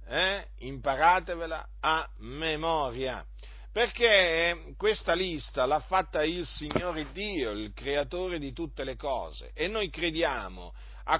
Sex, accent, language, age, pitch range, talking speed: male, native, Italian, 40-59, 155-225 Hz, 120 wpm